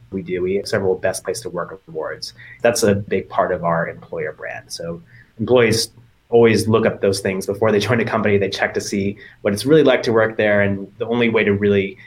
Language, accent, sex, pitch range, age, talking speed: English, American, male, 100-120 Hz, 30-49, 235 wpm